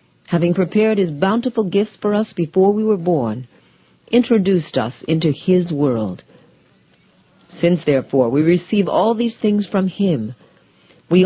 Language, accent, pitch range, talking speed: English, American, 135-195 Hz, 140 wpm